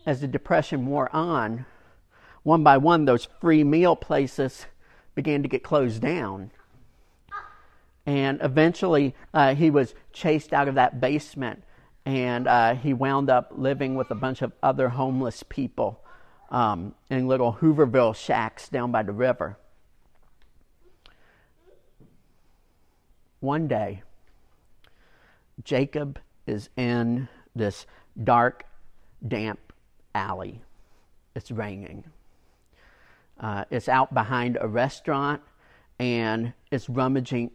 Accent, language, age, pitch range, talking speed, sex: American, English, 50-69, 115-150 Hz, 110 wpm, male